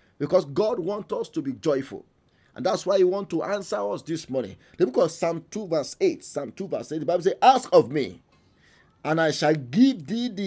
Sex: male